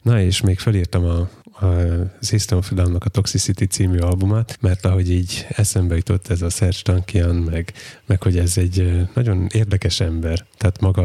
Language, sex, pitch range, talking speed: Hungarian, male, 90-105 Hz, 175 wpm